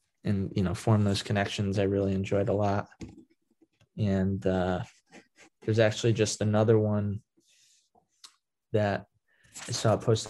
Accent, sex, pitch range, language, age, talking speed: American, male, 100-110 Hz, English, 20-39, 130 wpm